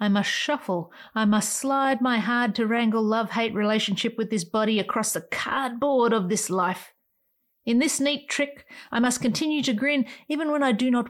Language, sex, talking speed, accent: English, female, 180 wpm, Australian